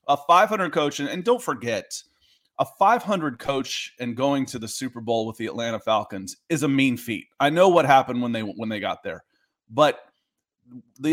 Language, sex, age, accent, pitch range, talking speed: English, male, 30-49, American, 120-155 Hz, 185 wpm